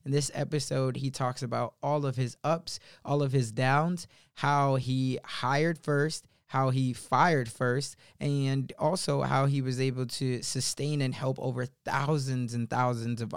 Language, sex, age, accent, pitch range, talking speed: English, male, 20-39, American, 130-185 Hz, 165 wpm